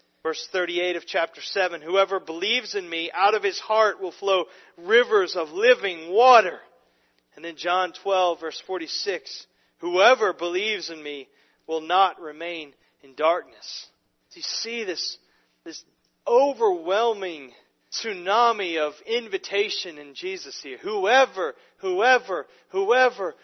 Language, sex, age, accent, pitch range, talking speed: English, male, 40-59, American, 170-250 Hz, 125 wpm